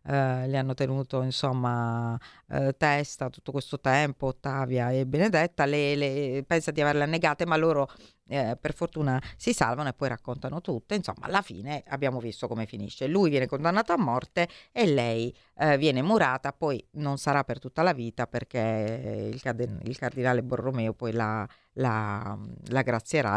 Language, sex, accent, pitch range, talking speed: Italian, female, native, 125-160 Hz, 165 wpm